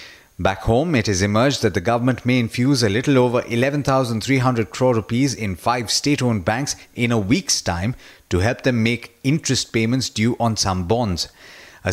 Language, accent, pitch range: English, Indian, 110-135 Hz